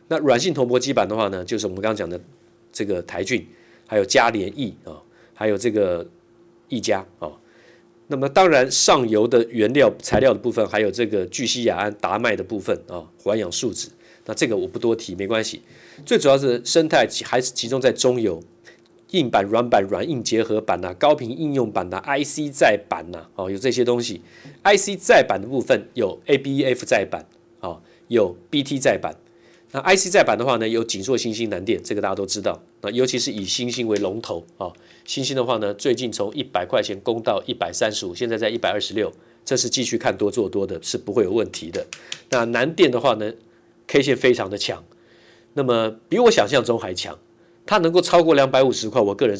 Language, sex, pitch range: Chinese, male, 110-135 Hz